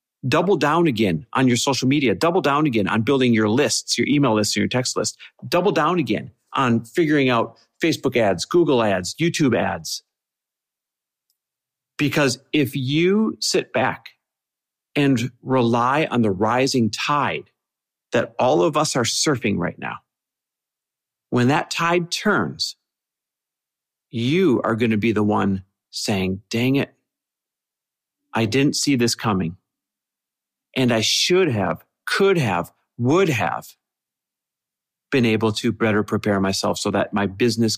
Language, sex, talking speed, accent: English, male, 140 wpm, American